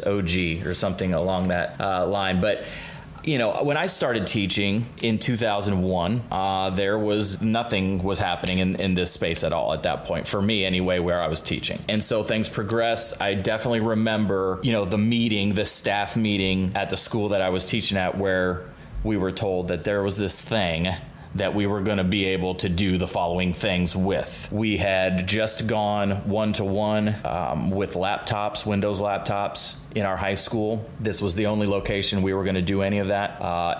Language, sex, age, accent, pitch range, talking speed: English, male, 30-49, American, 95-110 Hz, 190 wpm